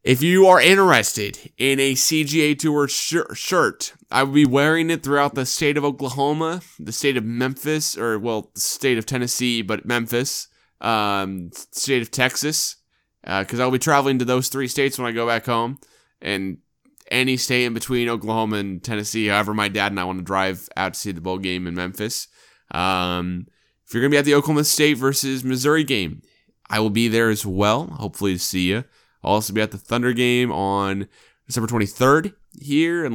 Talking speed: 195 wpm